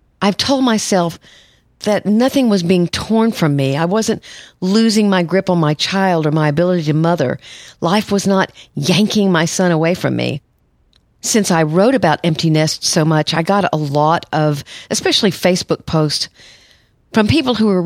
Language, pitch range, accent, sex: English, 155-195 Hz, American, female